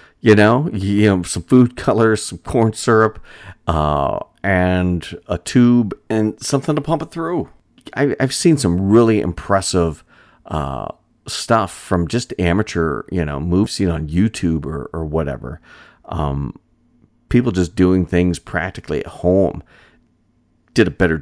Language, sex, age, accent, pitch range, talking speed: English, male, 40-59, American, 85-105 Hz, 145 wpm